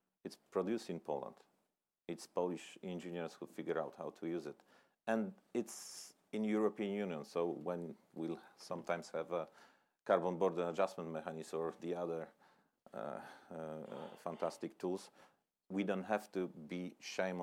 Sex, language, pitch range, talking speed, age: male, English, 85-105 Hz, 145 wpm, 40-59